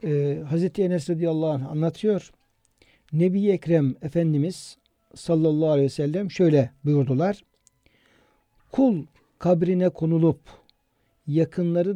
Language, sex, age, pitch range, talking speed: Turkish, male, 60-79, 140-190 Hz, 95 wpm